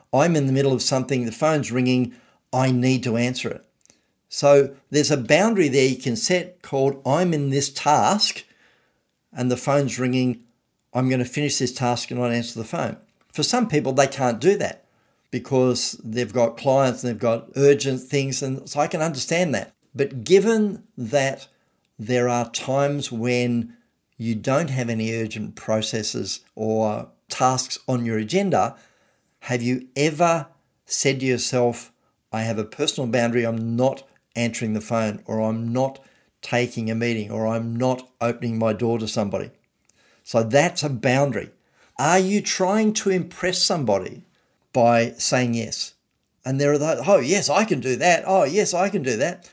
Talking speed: 170 wpm